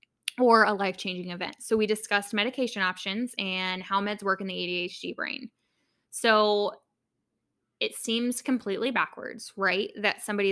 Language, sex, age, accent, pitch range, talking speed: English, female, 10-29, American, 180-215 Hz, 145 wpm